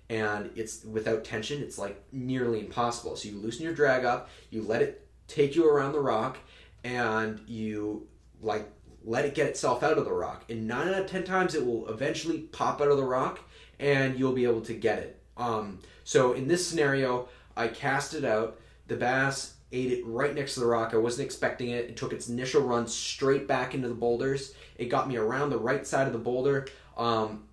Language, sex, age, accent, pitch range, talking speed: English, male, 20-39, American, 110-135 Hz, 210 wpm